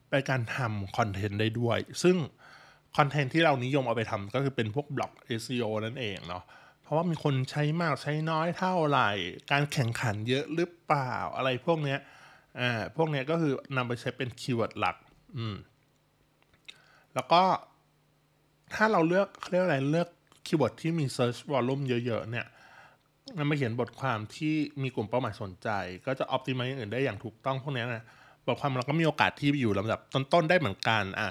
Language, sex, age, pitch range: Thai, male, 20-39, 115-145 Hz